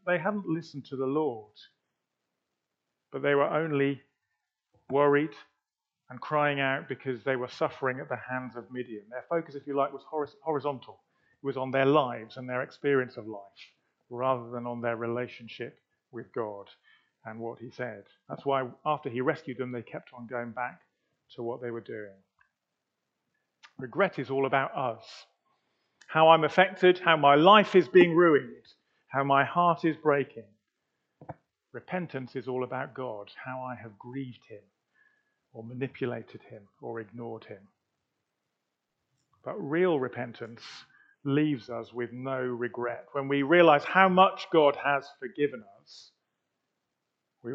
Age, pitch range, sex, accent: 40-59, 120-145 Hz, male, British